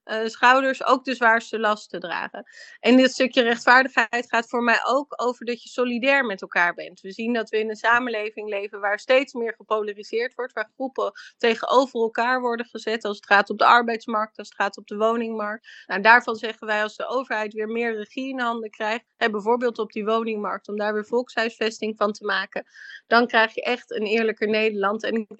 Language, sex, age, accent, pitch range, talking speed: Dutch, female, 30-49, Dutch, 210-235 Hz, 205 wpm